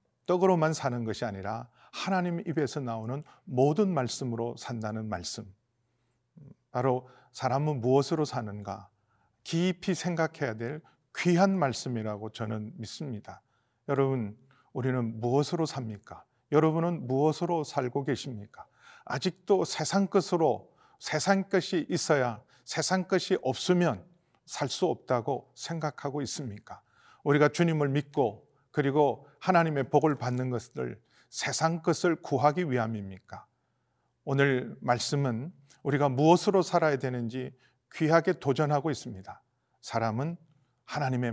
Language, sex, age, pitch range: Korean, male, 40-59, 120-160 Hz